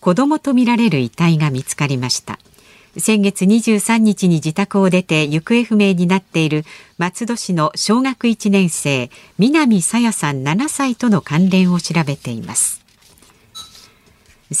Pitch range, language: 155-225 Hz, Japanese